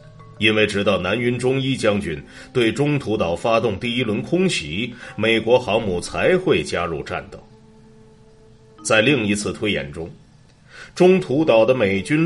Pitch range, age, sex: 110-150 Hz, 30-49, male